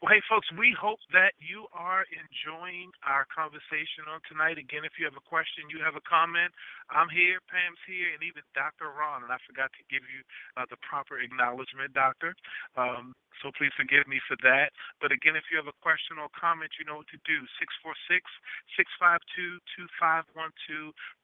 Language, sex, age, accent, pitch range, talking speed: English, male, 40-59, American, 130-155 Hz, 180 wpm